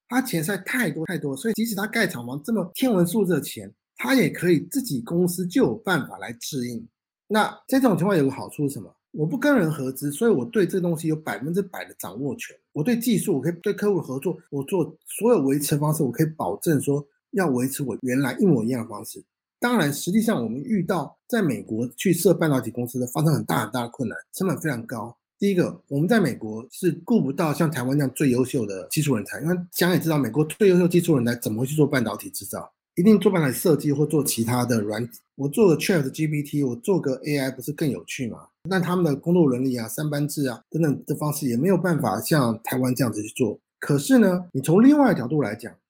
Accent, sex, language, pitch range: native, male, Chinese, 135-190 Hz